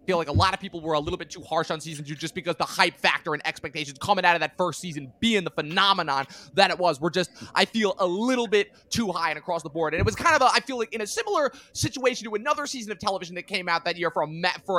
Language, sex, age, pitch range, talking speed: English, male, 20-39, 170-230 Hz, 290 wpm